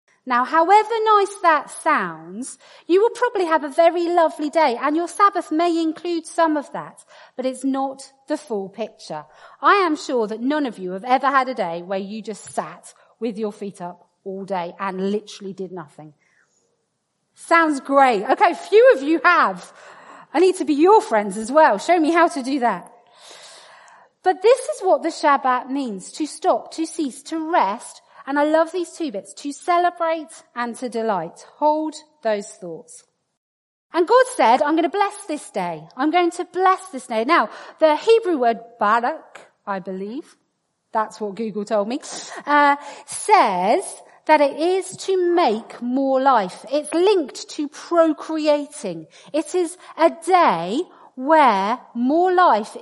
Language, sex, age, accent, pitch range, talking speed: English, female, 40-59, British, 225-340 Hz, 170 wpm